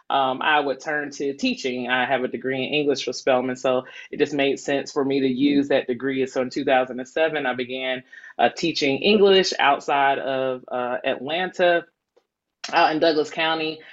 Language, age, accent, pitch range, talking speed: English, 20-39, American, 135-160 Hz, 175 wpm